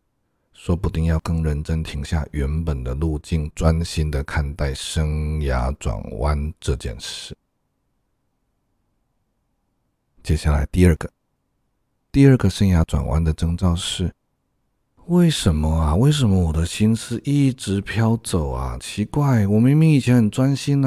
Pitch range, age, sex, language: 80-115 Hz, 50-69, male, Chinese